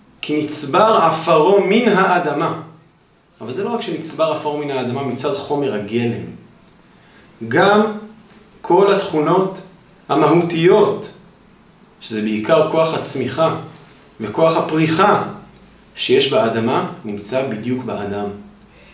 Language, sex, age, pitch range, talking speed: Hebrew, male, 30-49, 155-200 Hz, 100 wpm